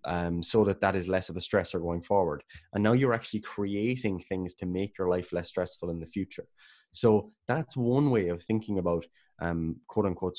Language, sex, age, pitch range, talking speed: English, male, 20-39, 90-105 Hz, 210 wpm